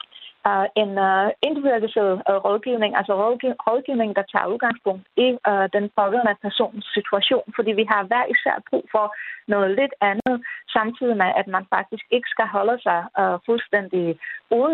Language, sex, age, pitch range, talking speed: Danish, female, 30-49, 190-225 Hz, 155 wpm